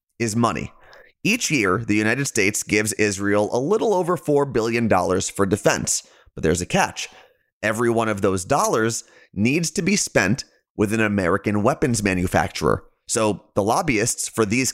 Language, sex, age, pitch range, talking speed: English, male, 30-49, 105-140 Hz, 165 wpm